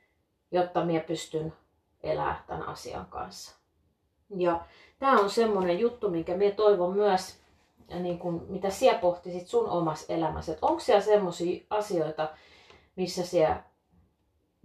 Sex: female